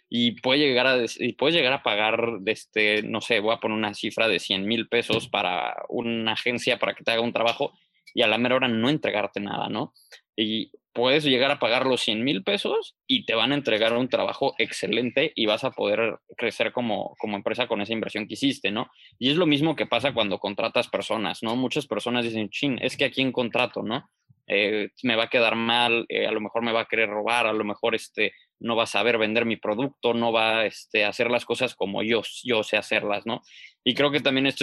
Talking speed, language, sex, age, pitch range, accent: 235 wpm, Spanish, male, 20-39, 110-130 Hz, Mexican